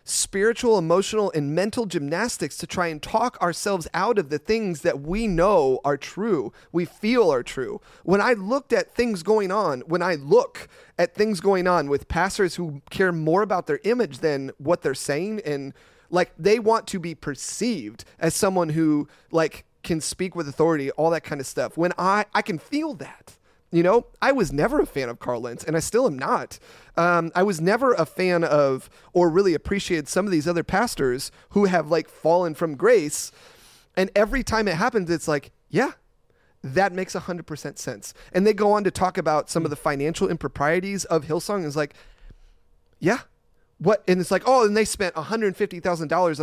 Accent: American